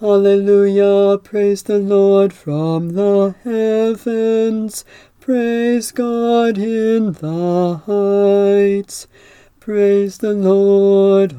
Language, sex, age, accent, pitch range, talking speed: English, male, 40-59, American, 200-230 Hz, 80 wpm